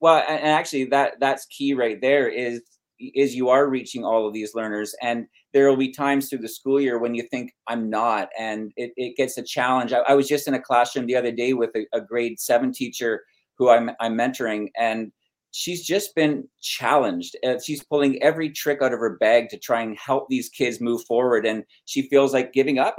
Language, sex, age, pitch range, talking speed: English, male, 30-49, 125-195 Hz, 215 wpm